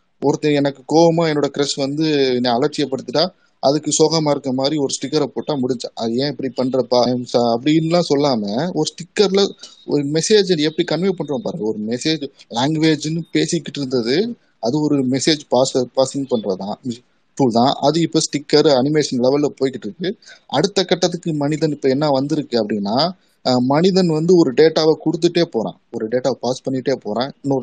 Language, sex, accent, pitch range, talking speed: Tamil, male, native, 130-160 Hz, 150 wpm